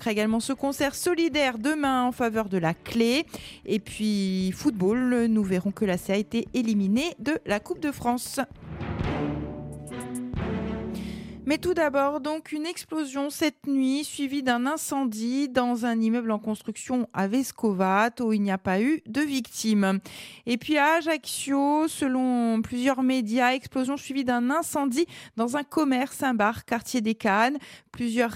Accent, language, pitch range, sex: French, French, 205-275 Hz, female